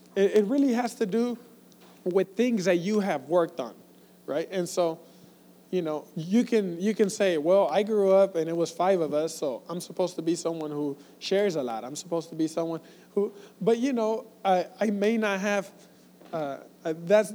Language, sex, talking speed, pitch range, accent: English, male, 200 wpm, 165-210 Hz, American